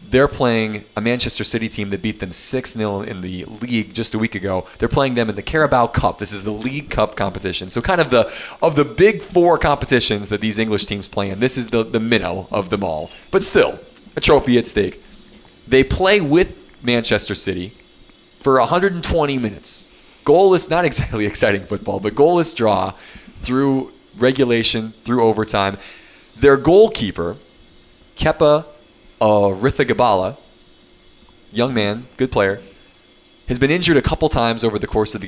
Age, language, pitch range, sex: 20-39, English, 105-140 Hz, male